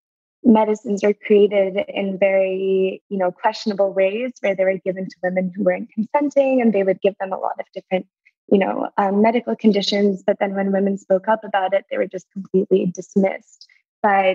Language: English